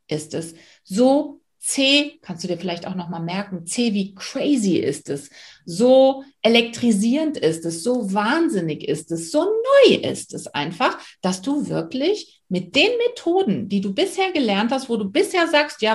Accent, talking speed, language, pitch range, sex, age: German, 170 wpm, German, 180-285 Hz, female, 50-69